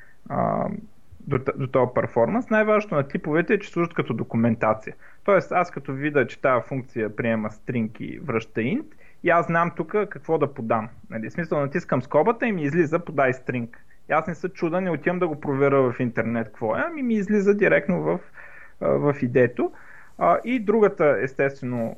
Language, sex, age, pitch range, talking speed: Bulgarian, male, 30-49, 125-205 Hz, 170 wpm